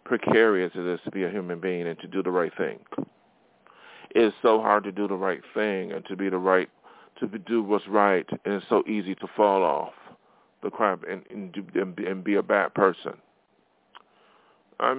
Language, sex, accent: English, male, American